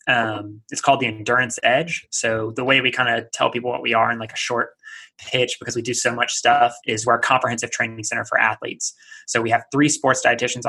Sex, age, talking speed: male, 20-39, 235 wpm